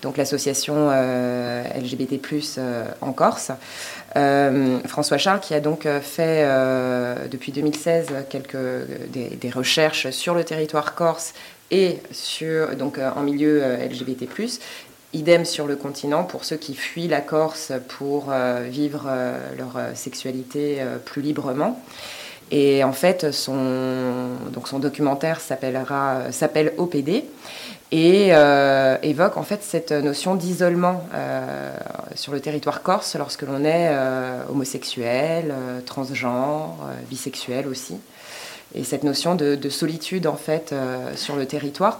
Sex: female